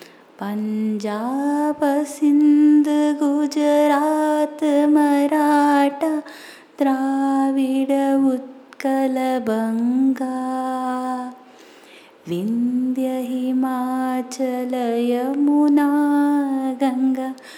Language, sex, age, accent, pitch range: Tamil, female, 20-39, native, 245-295 Hz